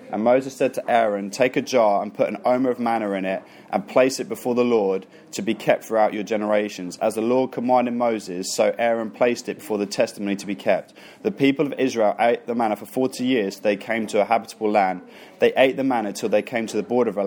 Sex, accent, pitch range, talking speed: male, British, 105-130 Hz, 245 wpm